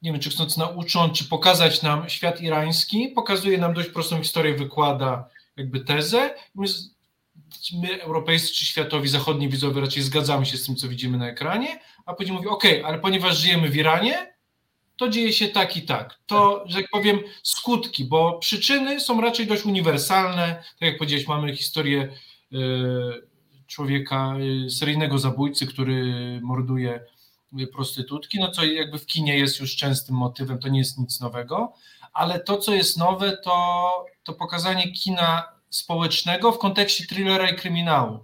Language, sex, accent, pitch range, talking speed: Polish, male, native, 140-180 Hz, 155 wpm